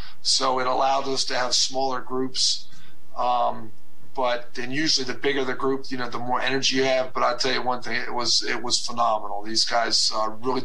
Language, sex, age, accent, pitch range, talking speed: English, male, 40-59, American, 120-135 Hz, 215 wpm